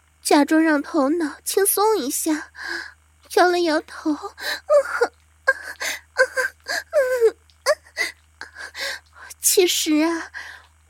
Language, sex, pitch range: Chinese, female, 305-430 Hz